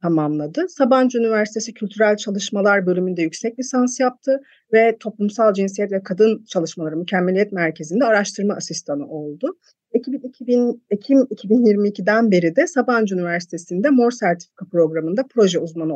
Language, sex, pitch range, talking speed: Turkish, female, 175-240 Hz, 125 wpm